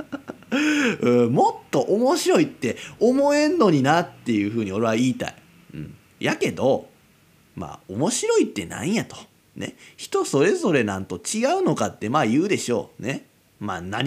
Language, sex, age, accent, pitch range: Japanese, male, 30-49, native, 120-190 Hz